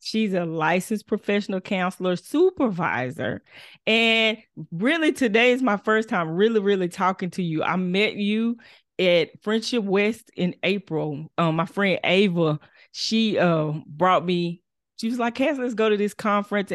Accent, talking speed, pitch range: American, 155 wpm, 175-225 Hz